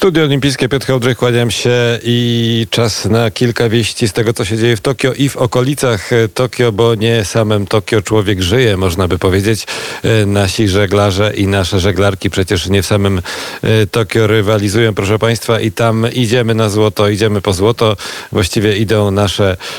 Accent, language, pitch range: native, Polish, 100-115 Hz